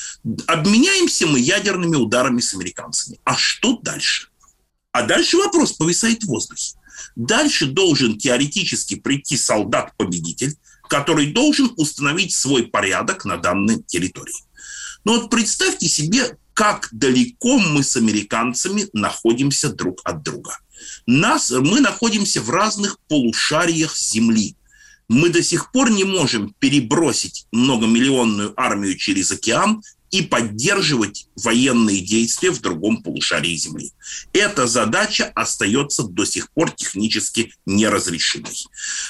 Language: Russian